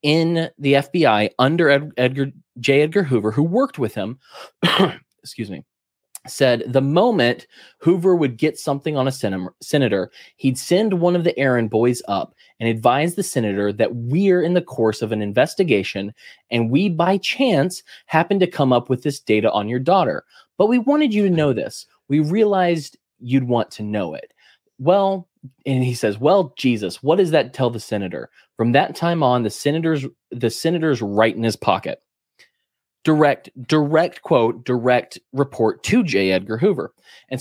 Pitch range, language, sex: 110-165 Hz, English, male